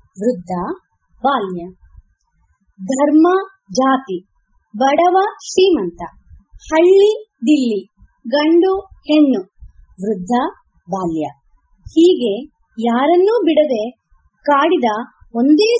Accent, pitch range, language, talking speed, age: native, 210-345 Hz, Kannada, 65 wpm, 20-39